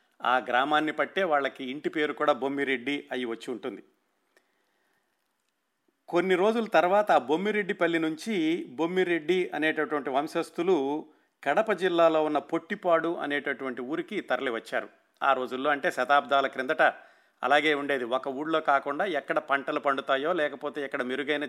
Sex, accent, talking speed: male, native, 120 wpm